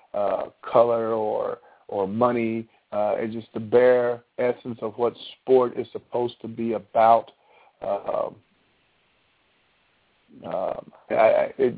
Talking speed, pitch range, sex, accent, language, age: 105 wpm, 105-120 Hz, male, American, English, 50-69